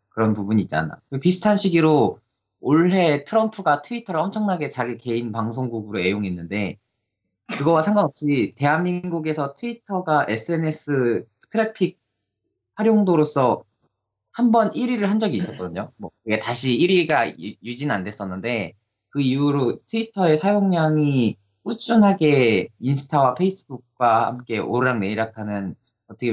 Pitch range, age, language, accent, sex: 110-155 Hz, 20-39, Korean, native, male